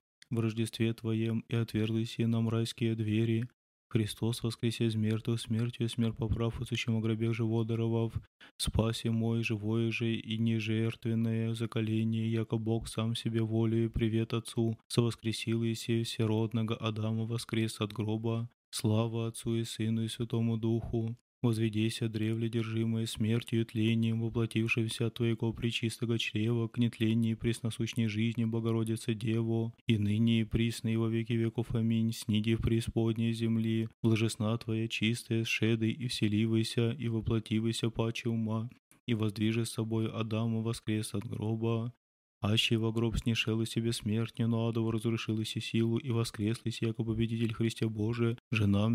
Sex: male